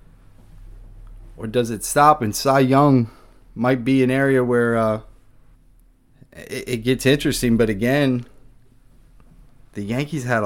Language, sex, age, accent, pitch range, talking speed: English, male, 20-39, American, 105-125 Hz, 125 wpm